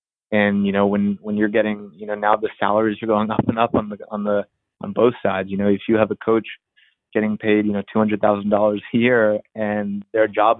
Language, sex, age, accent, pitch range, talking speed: English, male, 20-39, American, 100-110 Hz, 225 wpm